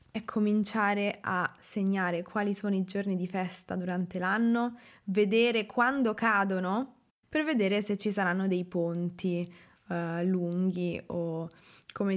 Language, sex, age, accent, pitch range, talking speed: Italian, female, 20-39, native, 185-230 Hz, 125 wpm